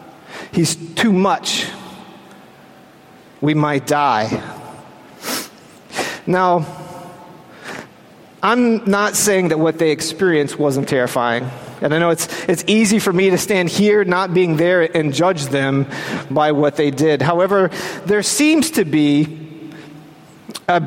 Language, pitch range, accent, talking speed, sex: English, 160-225 Hz, American, 125 wpm, male